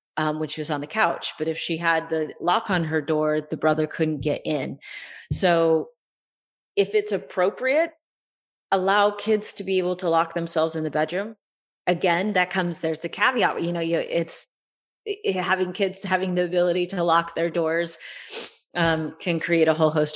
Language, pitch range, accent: English, 155-180 Hz, American